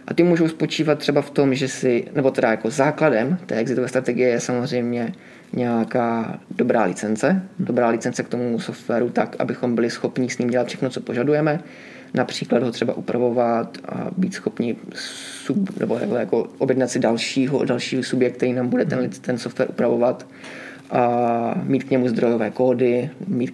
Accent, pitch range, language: native, 120-140 Hz, Czech